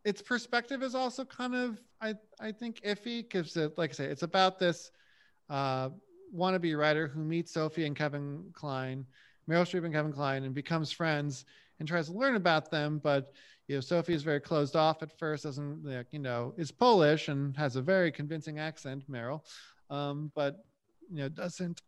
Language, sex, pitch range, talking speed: English, male, 145-185 Hz, 185 wpm